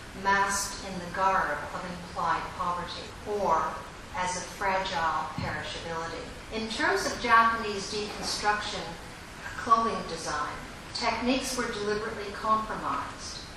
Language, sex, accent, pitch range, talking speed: English, female, American, 185-220 Hz, 100 wpm